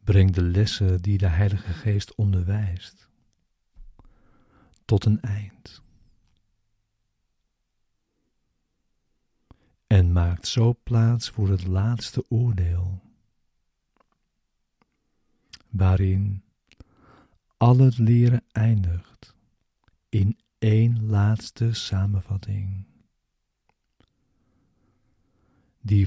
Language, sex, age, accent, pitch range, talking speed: Dutch, male, 50-69, Dutch, 95-110 Hz, 65 wpm